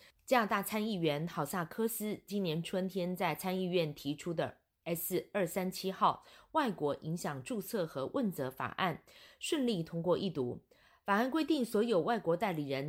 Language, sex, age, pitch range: Chinese, female, 30-49, 155-215 Hz